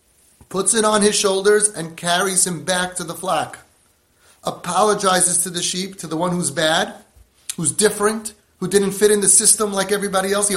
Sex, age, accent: male, 30-49, American